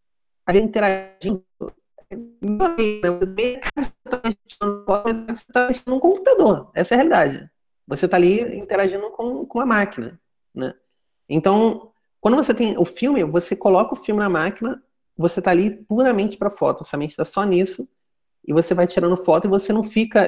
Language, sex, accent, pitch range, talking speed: Portuguese, male, Brazilian, 160-220 Hz, 160 wpm